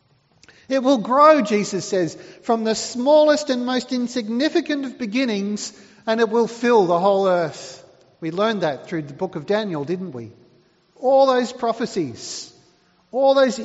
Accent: Australian